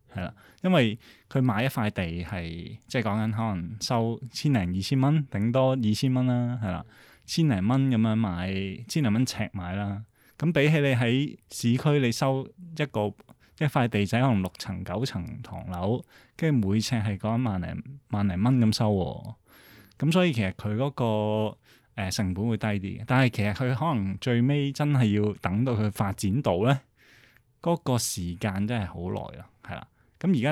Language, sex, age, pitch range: Chinese, male, 20-39, 100-130 Hz